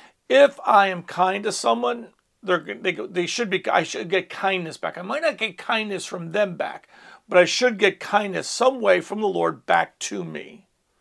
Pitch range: 180-215 Hz